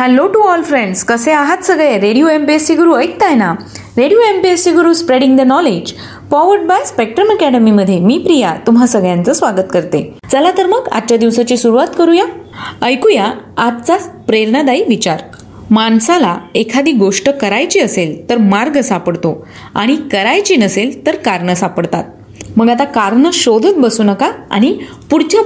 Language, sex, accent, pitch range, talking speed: Marathi, female, native, 220-320 Hz, 105 wpm